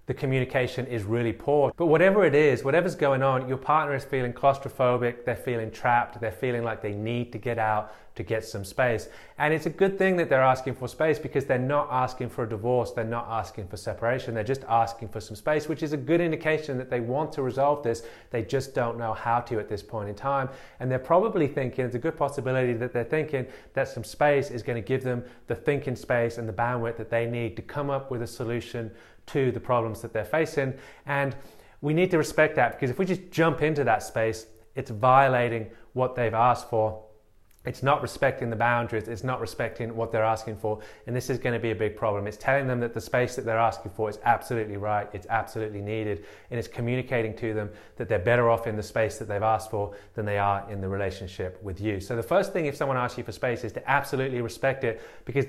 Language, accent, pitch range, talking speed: English, British, 110-135 Hz, 235 wpm